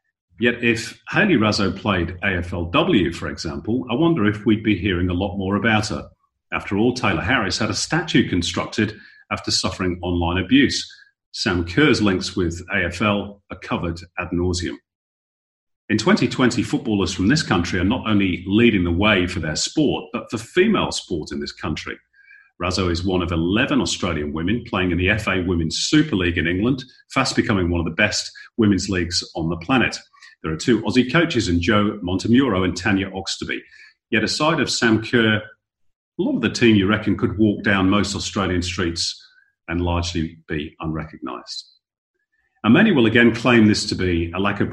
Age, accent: 40-59, British